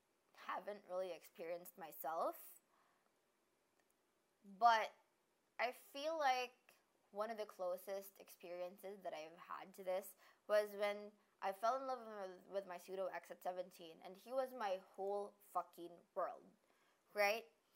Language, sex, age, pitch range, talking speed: English, female, 20-39, 180-230 Hz, 130 wpm